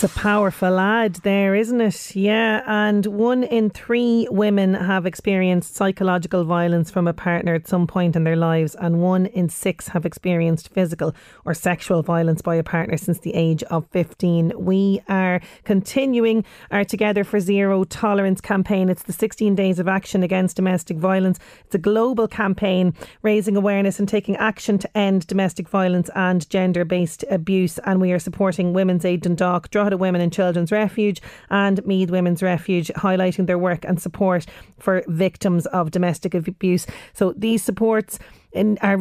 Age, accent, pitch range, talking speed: 30-49, Irish, 180-205 Hz, 170 wpm